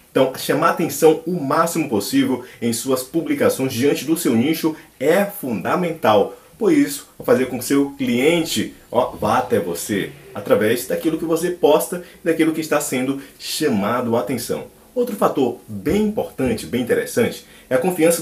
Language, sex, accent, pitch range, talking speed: Portuguese, male, Brazilian, 130-175 Hz, 160 wpm